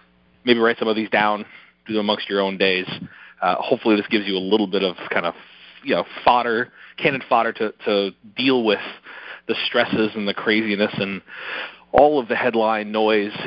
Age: 30-49